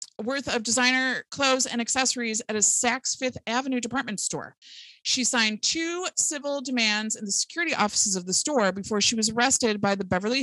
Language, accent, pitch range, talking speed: English, American, 195-255 Hz, 185 wpm